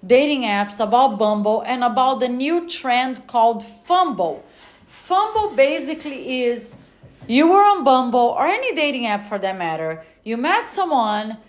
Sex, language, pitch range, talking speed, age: female, English, 210-285 Hz, 145 wpm, 40-59